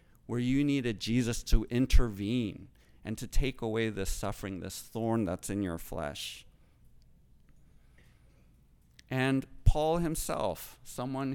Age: 50-69